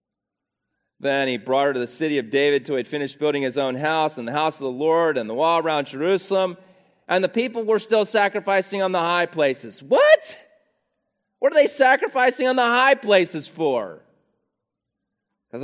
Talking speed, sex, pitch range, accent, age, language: 190 wpm, male, 130-190 Hz, American, 30-49, English